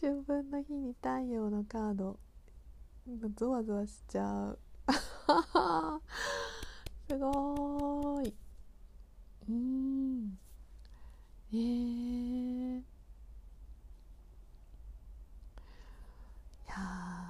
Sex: female